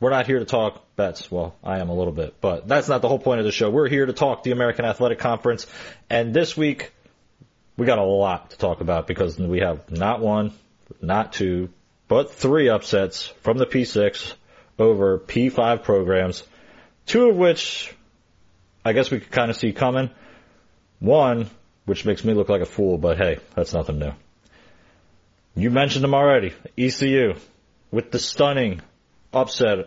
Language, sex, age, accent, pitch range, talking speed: English, male, 30-49, American, 95-125 Hz, 175 wpm